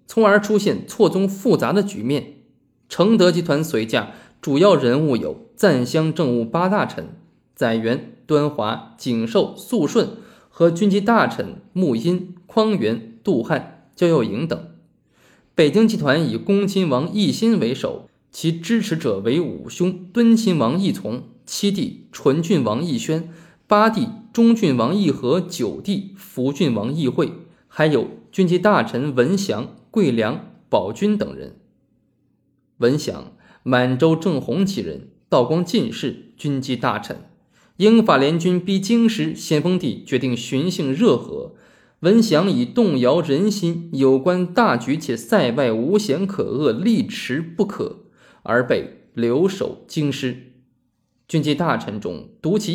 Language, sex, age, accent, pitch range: Chinese, male, 20-39, native, 140-210 Hz